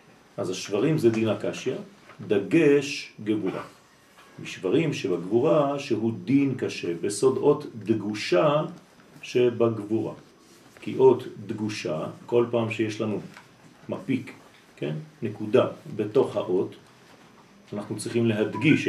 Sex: male